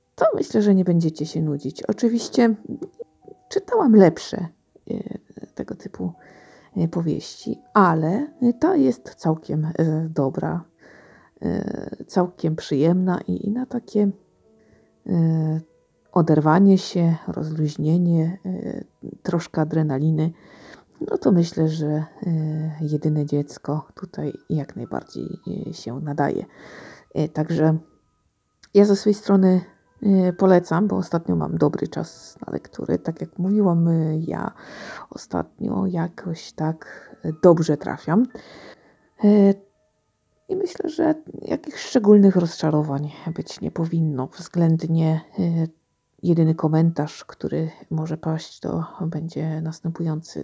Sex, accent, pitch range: female, native, 155-195 Hz